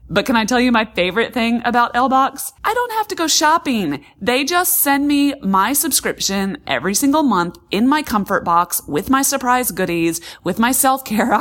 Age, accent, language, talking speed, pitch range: 30-49, American, English, 190 wpm, 190-265 Hz